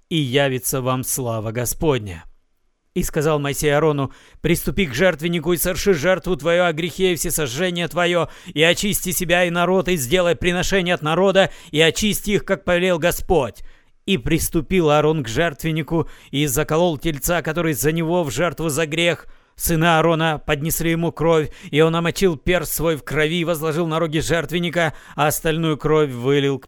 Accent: native